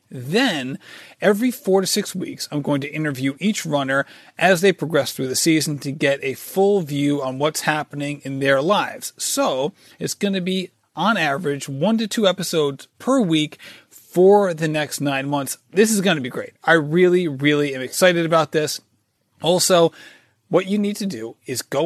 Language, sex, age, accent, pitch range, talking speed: English, male, 30-49, American, 135-195 Hz, 185 wpm